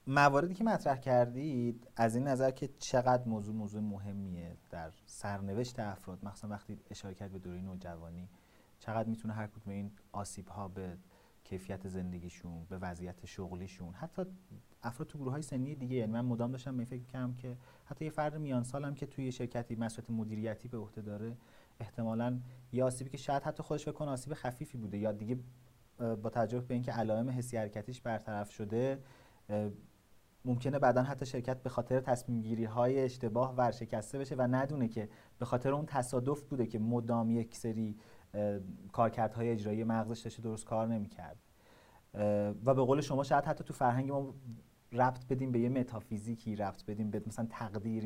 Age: 40-59